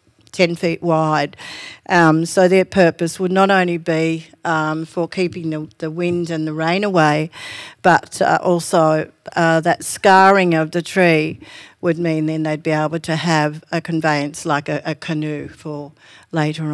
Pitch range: 155-185 Hz